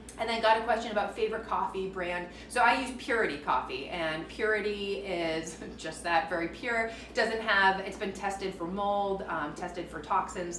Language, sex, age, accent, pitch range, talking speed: English, female, 30-49, American, 175-240 Hz, 180 wpm